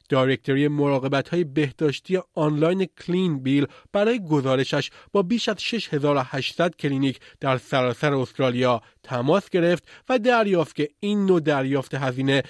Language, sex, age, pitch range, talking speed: Persian, male, 30-49, 140-185 Hz, 120 wpm